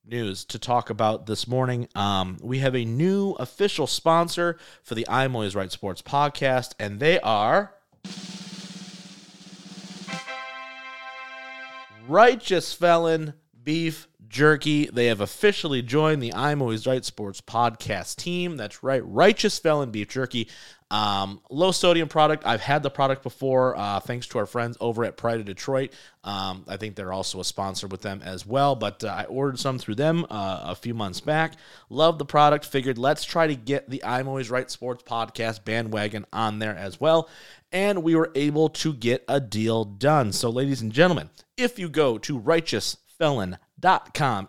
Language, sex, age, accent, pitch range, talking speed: English, male, 30-49, American, 110-155 Hz, 165 wpm